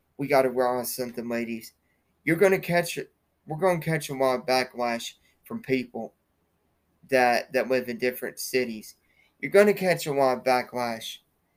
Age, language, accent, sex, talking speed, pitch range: 20-39, English, American, male, 160 wpm, 130-155 Hz